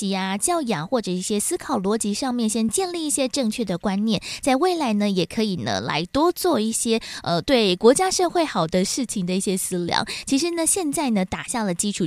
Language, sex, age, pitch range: Chinese, female, 20-39, 190-270 Hz